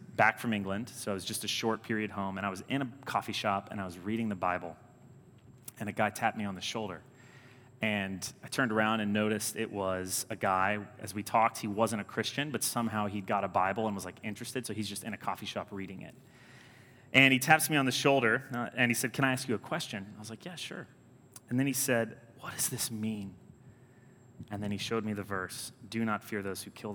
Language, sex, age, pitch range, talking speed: English, male, 30-49, 105-125 Hz, 245 wpm